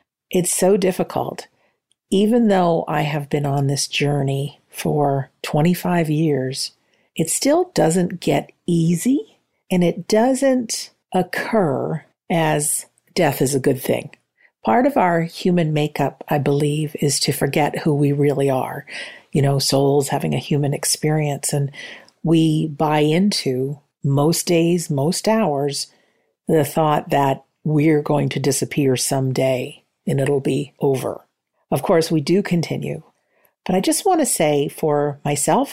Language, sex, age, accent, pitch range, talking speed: English, female, 50-69, American, 140-180 Hz, 140 wpm